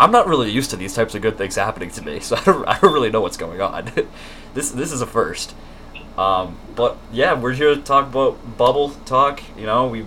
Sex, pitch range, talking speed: male, 95-115 Hz, 245 wpm